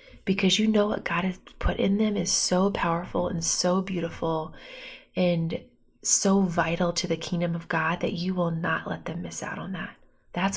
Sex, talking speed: female, 195 wpm